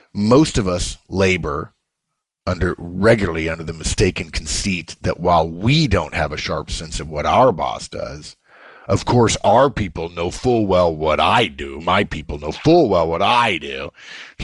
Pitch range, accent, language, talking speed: 90-130 Hz, American, English, 175 wpm